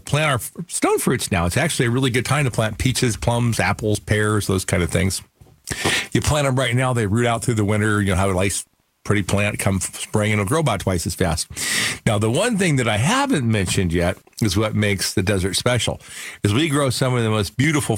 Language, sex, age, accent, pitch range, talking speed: English, male, 50-69, American, 110-150 Hz, 235 wpm